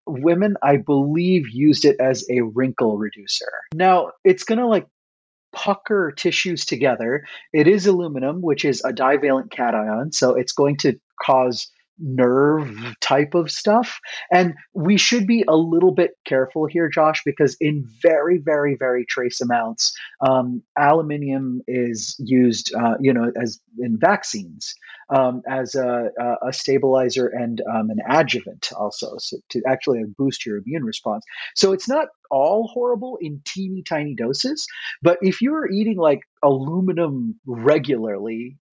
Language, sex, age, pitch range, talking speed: English, male, 30-49, 125-185 Hz, 145 wpm